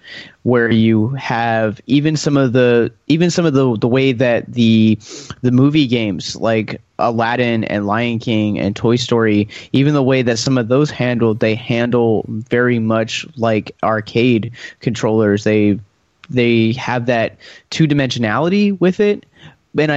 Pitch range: 110-130 Hz